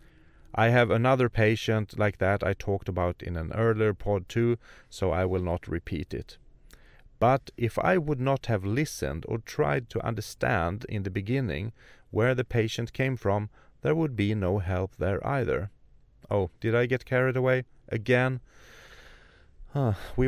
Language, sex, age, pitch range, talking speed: English, male, 30-49, 95-120 Hz, 165 wpm